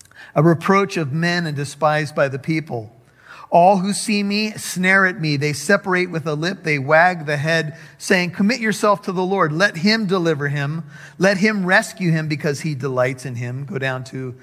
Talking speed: 195 wpm